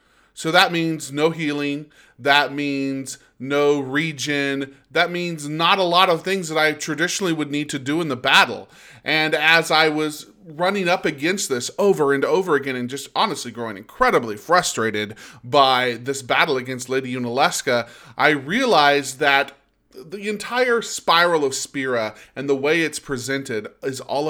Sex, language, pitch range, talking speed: male, English, 125-155 Hz, 160 wpm